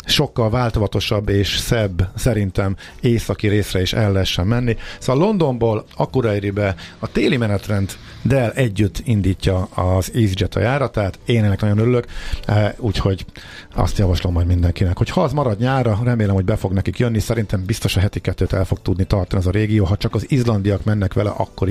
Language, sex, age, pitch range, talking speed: Hungarian, male, 50-69, 90-110 Hz, 175 wpm